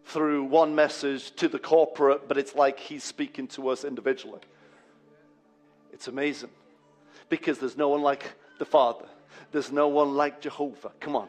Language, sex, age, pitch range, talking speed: English, male, 40-59, 140-155 Hz, 160 wpm